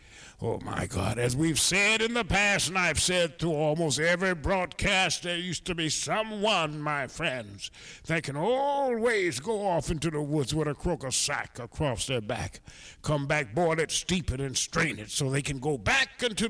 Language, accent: English, American